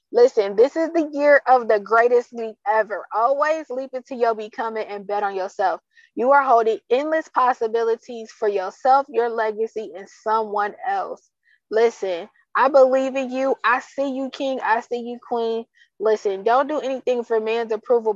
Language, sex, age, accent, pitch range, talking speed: English, female, 20-39, American, 215-260 Hz, 170 wpm